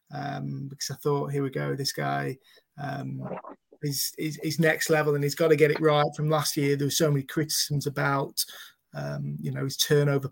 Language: English